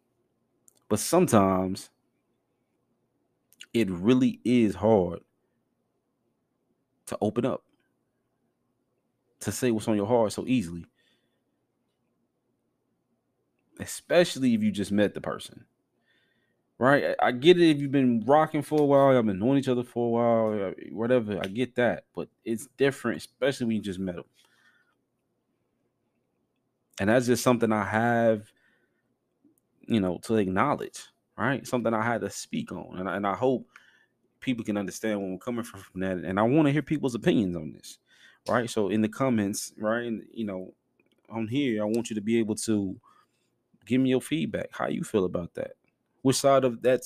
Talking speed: 165 wpm